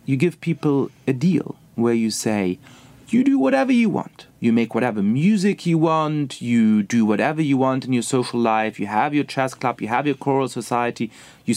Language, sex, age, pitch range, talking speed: English, male, 30-49, 115-160 Hz, 200 wpm